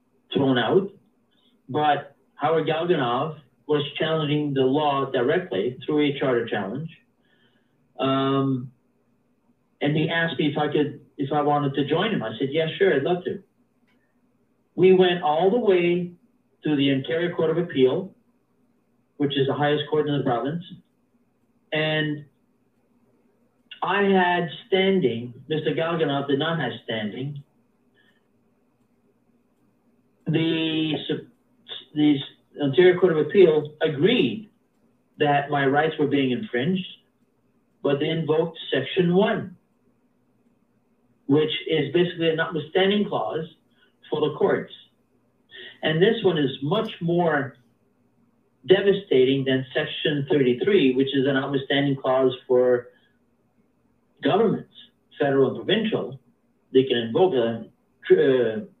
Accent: American